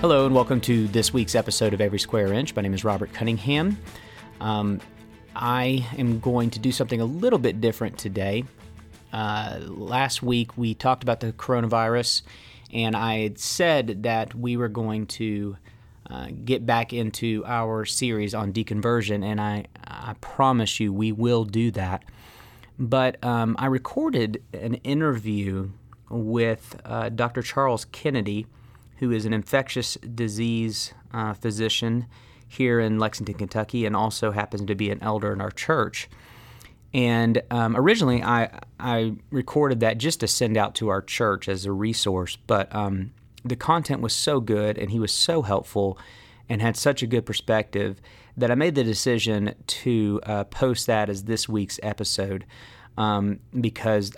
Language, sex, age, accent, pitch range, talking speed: English, male, 30-49, American, 105-120 Hz, 160 wpm